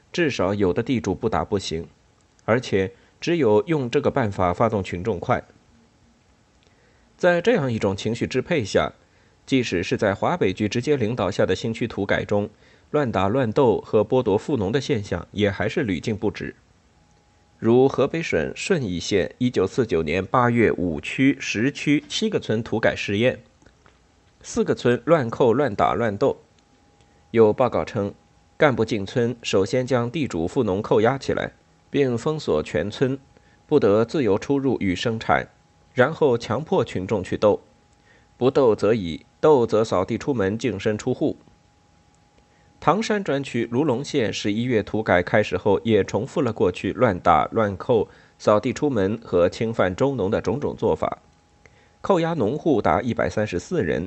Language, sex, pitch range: Chinese, male, 100-130 Hz